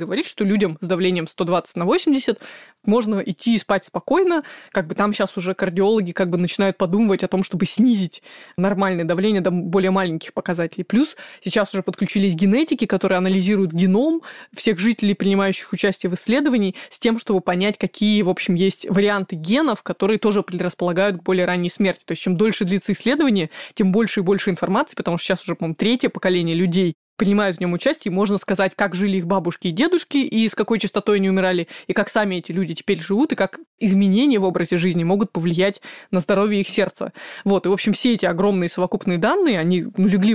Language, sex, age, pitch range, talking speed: Russian, female, 20-39, 185-215 Hz, 195 wpm